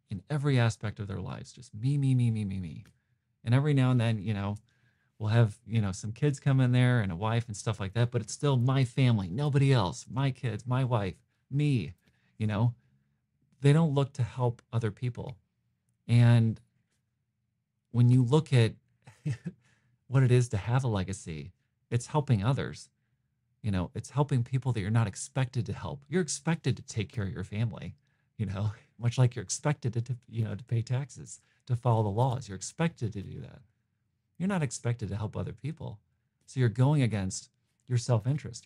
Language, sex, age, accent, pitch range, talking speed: English, male, 40-59, American, 105-130 Hz, 195 wpm